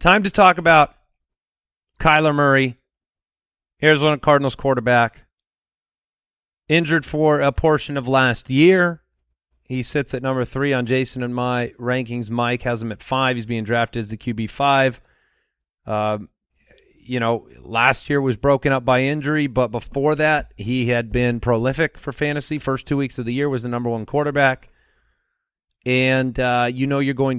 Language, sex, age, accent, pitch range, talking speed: English, male, 30-49, American, 120-140 Hz, 160 wpm